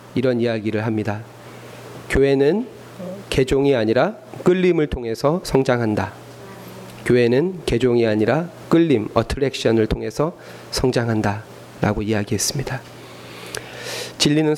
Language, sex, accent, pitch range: Korean, male, native, 110-145 Hz